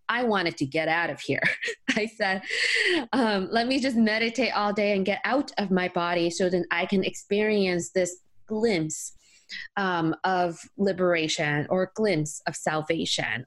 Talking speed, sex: 165 wpm, female